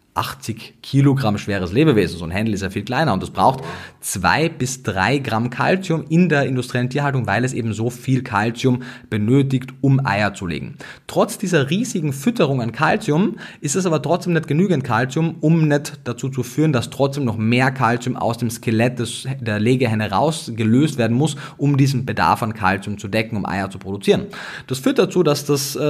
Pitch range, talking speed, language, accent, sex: 110-140 Hz, 190 wpm, German, German, male